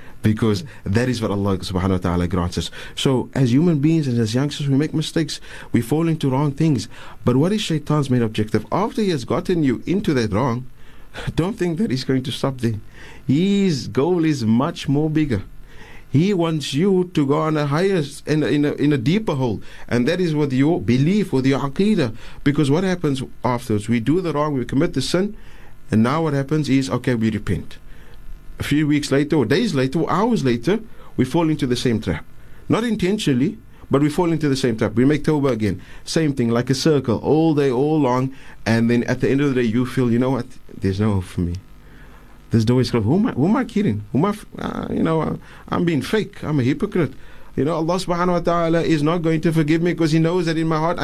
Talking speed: 225 wpm